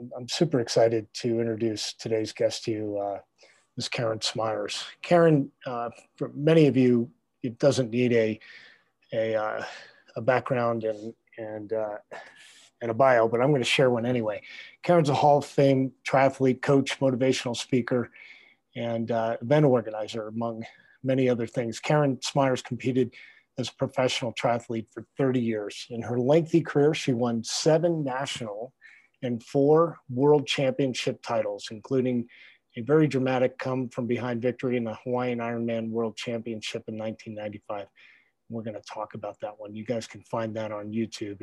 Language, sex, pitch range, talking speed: English, male, 115-135 Hz, 160 wpm